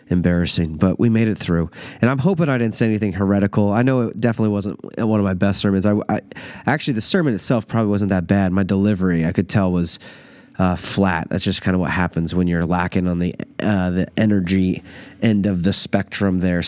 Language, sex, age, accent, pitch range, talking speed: English, male, 30-49, American, 95-115 Hz, 210 wpm